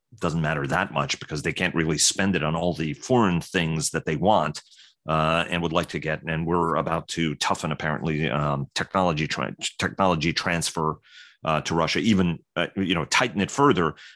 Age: 30-49